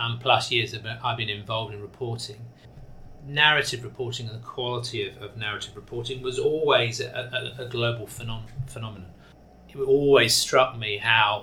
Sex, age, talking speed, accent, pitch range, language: male, 30-49, 145 wpm, British, 115-130 Hz, English